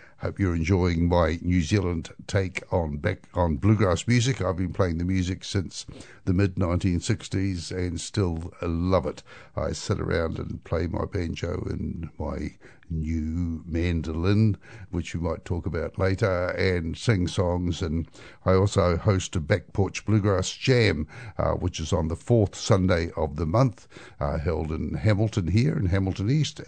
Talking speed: 160 wpm